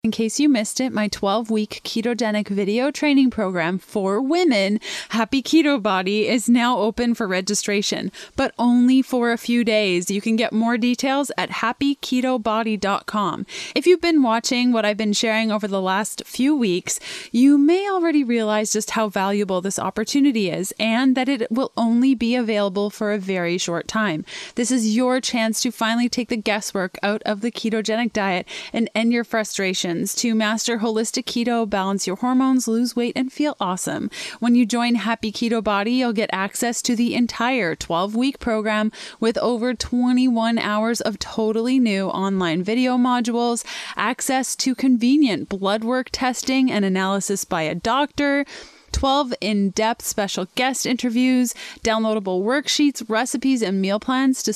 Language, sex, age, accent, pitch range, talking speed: English, female, 20-39, American, 210-255 Hz, 160 wpm